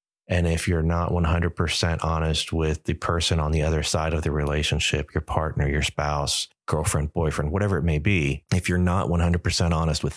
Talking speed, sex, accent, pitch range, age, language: 190 wpm, male, American, 80-105 Hz, 30-49, English